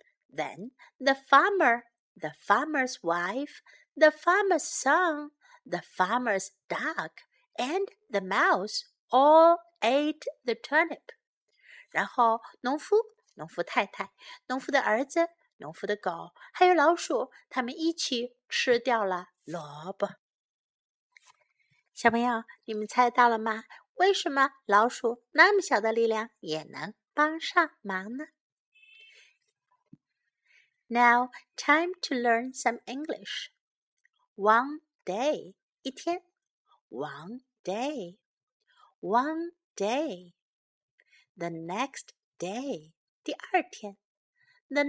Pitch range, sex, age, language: 215-345 Hz, female, 50-69, Chinese